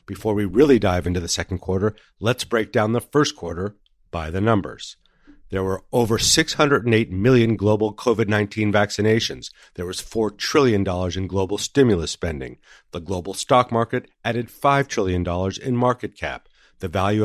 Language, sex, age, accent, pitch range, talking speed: English, male, 50-69, American, 95-120 Hz, 155 wpm